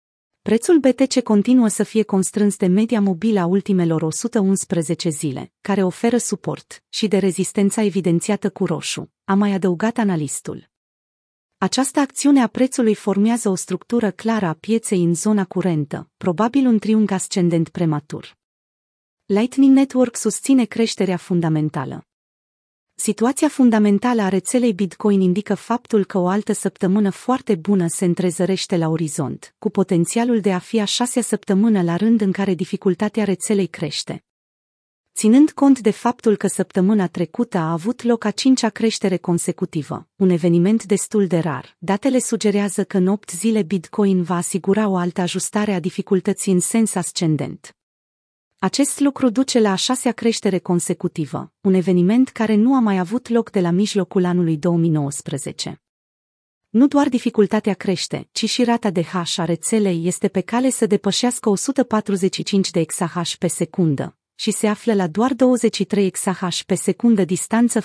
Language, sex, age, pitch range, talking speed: Romanian, female, 30-49, 180-225 Hz, 150 wpm